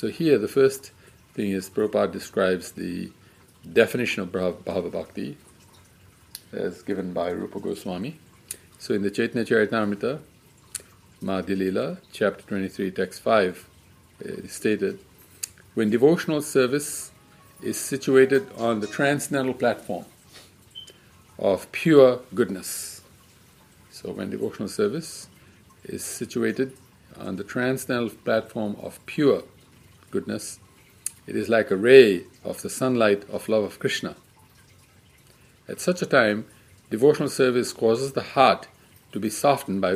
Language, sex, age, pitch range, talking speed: English, male, 50-69, 100-130 Hz, 120 wpm